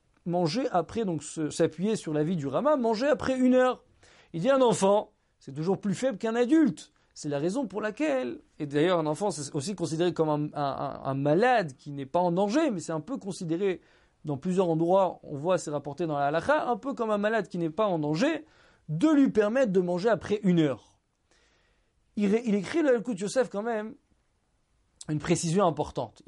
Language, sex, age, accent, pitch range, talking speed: French, male, 40-59, French, 155-225 Hz, 210 wpm